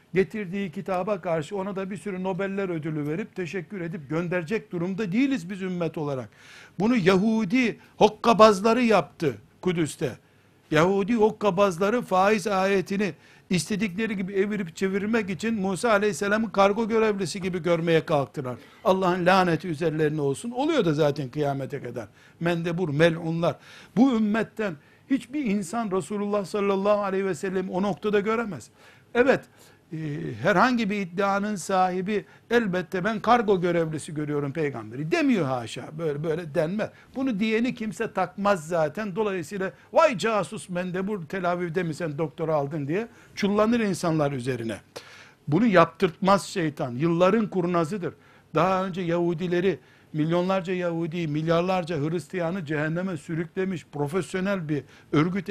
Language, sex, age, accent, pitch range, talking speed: Turkish, male, 60-79, native, 160-205 Hz, 125 wpm